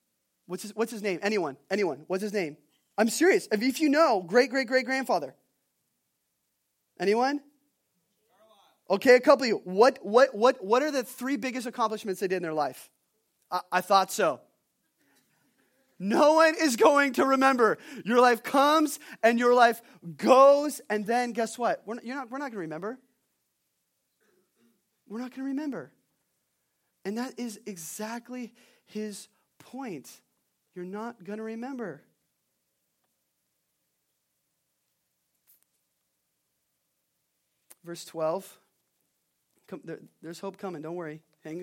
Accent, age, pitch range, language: American, 20-39, 170-245 Hz, English